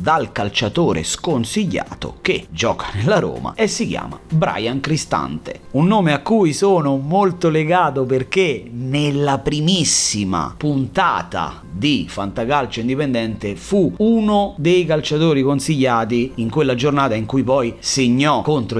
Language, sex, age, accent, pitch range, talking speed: Italian, male, 30-49, native, 100-145 Hz, 125 wpm